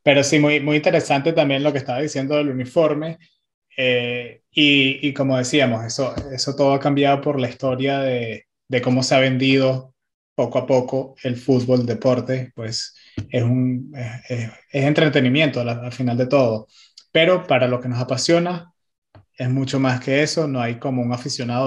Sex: male